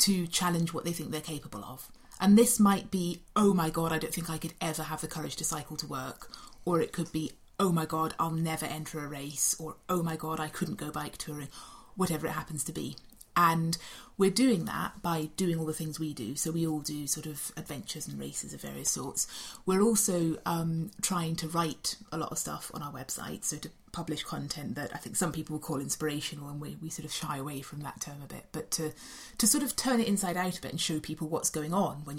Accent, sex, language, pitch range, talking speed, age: British, female, English, 155-180 Hz, 245 wpm, 30-49